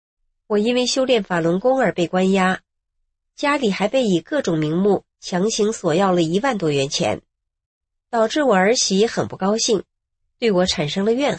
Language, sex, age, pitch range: Chinese, female, 30-49, 165-235 Hz